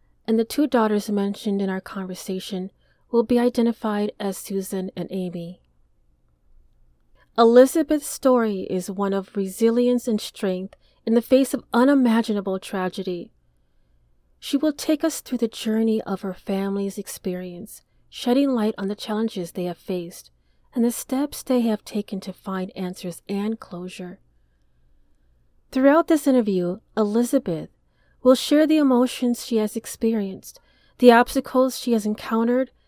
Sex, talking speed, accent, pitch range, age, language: female, 135 wpm, American, 190-245 Hz, 30-49, English